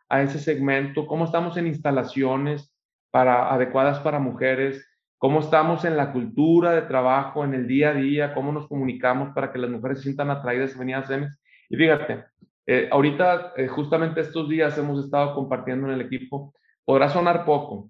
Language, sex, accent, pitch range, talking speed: Spanish, male, Mexican, 130-150 Hz, 180 wpm